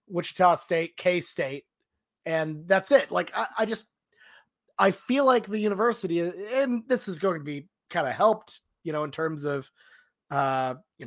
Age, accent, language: 30-49, American, English